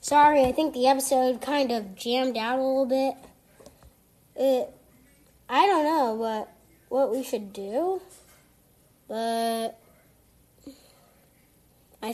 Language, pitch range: English, 230-285 Hz